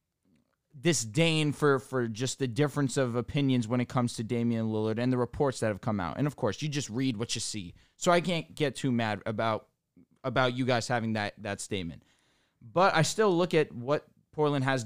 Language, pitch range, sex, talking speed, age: English, 115-150 Hz, male, 210 wpm, 20-39